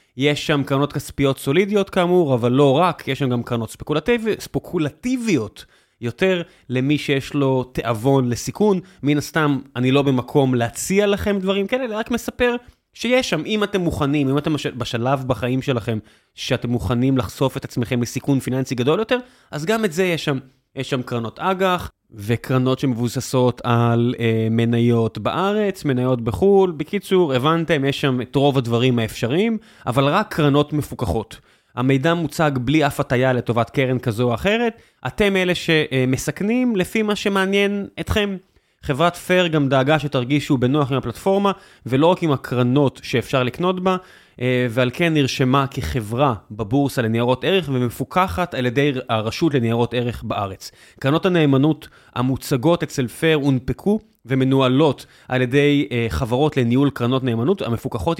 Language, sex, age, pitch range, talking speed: Hebrew, male, 20-39, 125-175 Hz, 145 wpm